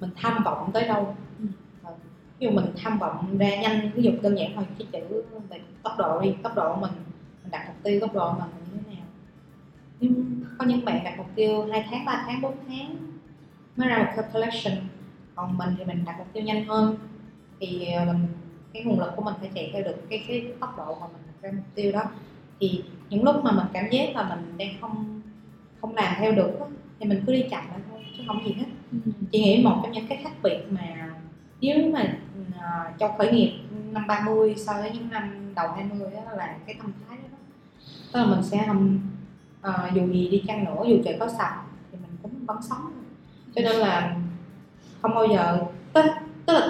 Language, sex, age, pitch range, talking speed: Vietnamese, female, 20-39, 180-220 Hz, 215 wpm